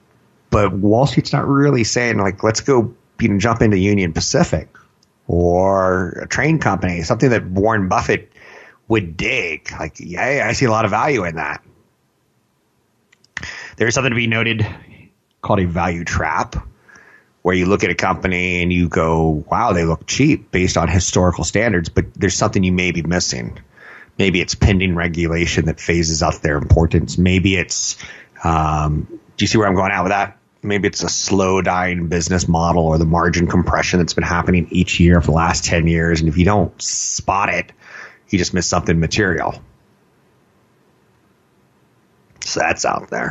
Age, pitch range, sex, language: 30-49, 85-105 Hz, male, English